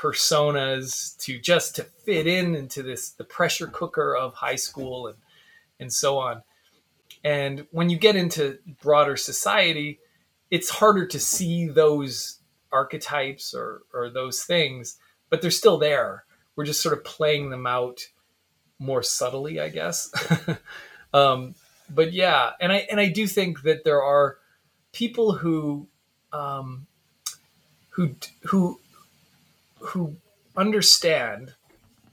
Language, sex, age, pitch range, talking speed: English, male, 20-39, 140-180 Hz, 130 wpm